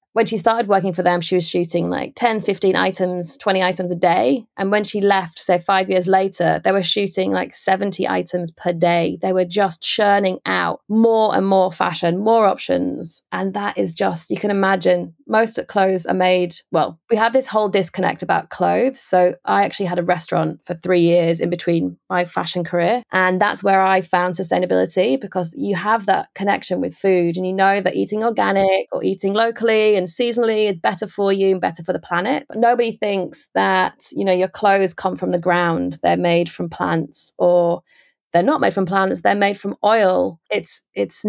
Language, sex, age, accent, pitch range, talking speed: English, female, 20-39, British, 175-205 Hz, 200 wpm